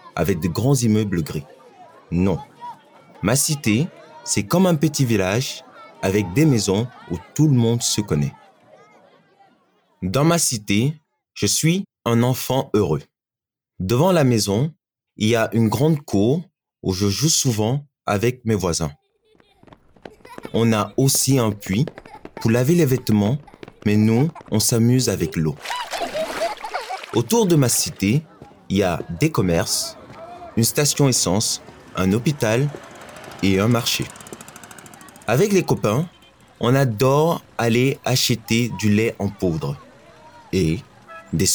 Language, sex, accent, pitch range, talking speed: Italian, male, French, 105-140 Hz, 130 wpm